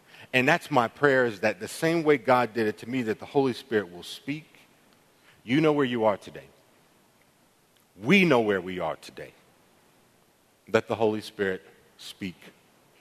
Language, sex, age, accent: English, male, 50-69, American